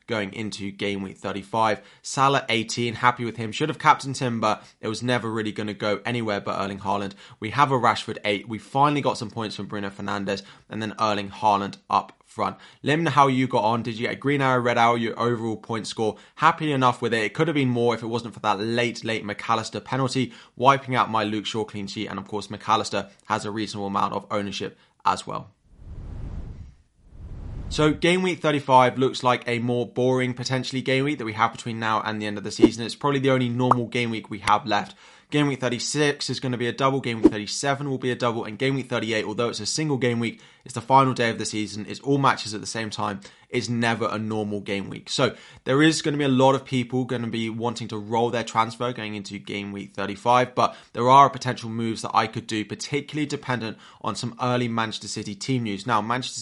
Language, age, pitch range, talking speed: English, 20-39, 105-130 Hz, 235 wpm